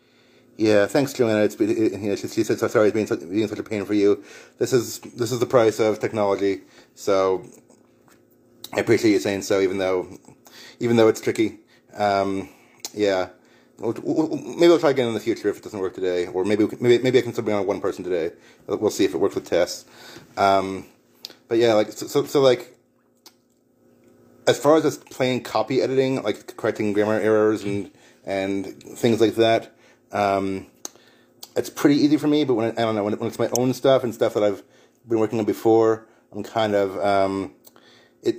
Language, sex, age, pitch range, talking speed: English, male, 30-49, 100-130 Hz, 205 wpm